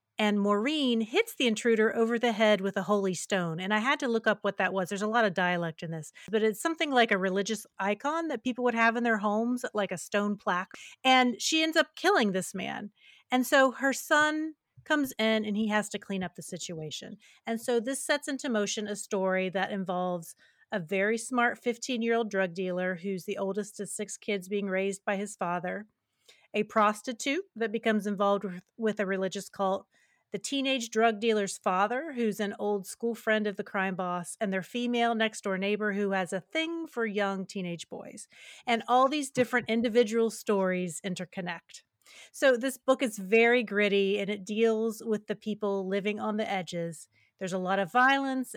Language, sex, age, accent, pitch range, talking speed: English, female, 30-49, American, 195-245 Hz, 195 wpm